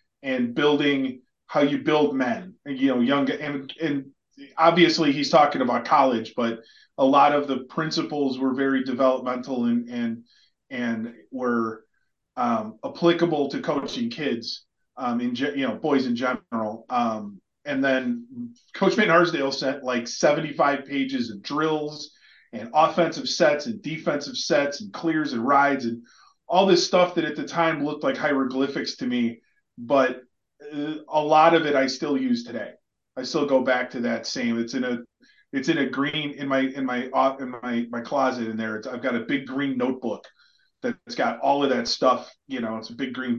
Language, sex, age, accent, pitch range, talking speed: English, male, 30-49, American, 130-180 Hz, 180 wpm